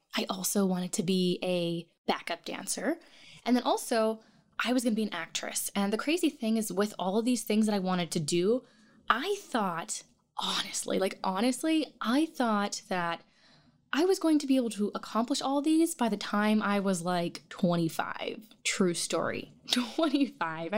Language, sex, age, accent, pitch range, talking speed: English, female, 10-29, American, 190-255 Hz, 175 wpm